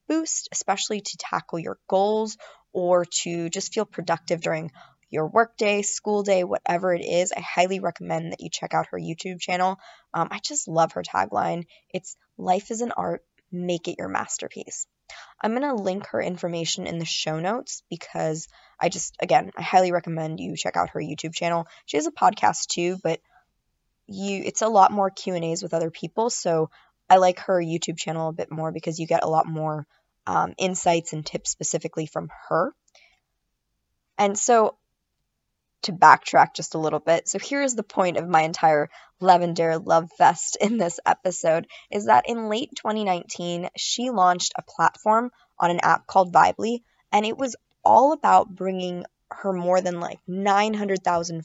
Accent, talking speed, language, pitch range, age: American, 180 wpm, English, 165-205 Hz, 20-39